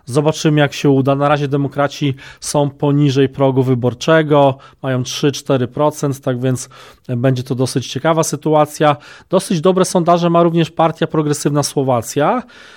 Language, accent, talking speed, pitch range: Polish, native, 130 wpm, 135-160 Hz